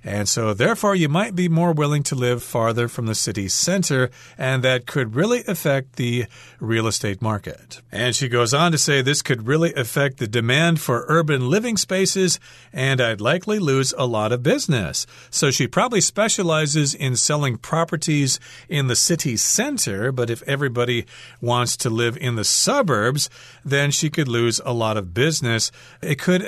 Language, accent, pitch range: Chinese, American, 115-145 Hz